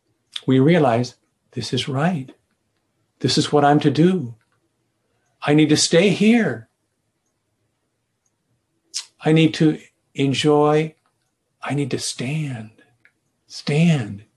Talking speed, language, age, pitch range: 105 wpm, English, 50-69, 115-140 Hz